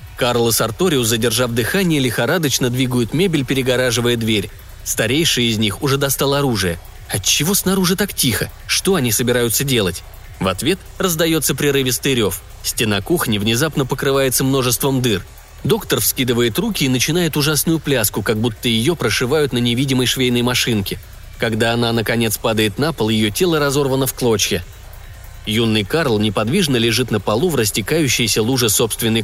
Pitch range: 110-145 Hz